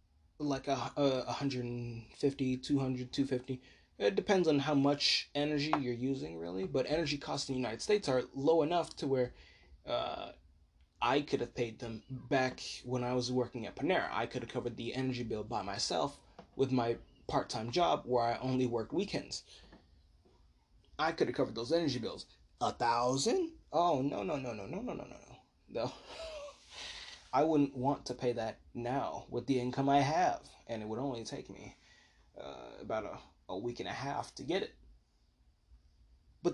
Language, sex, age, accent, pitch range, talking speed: English, male, 20-39, American, 105-145 Hz, 175 wpm